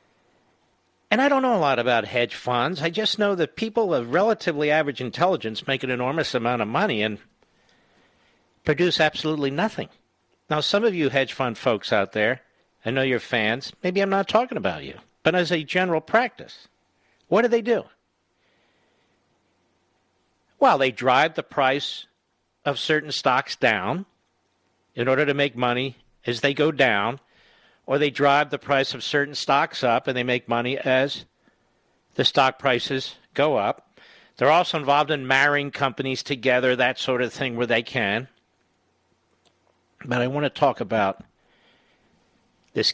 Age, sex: 50-69, male